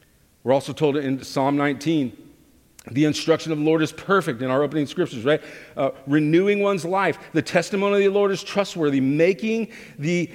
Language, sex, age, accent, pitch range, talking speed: English, male, 50-69, American, 120-160 Hz, 180 wpm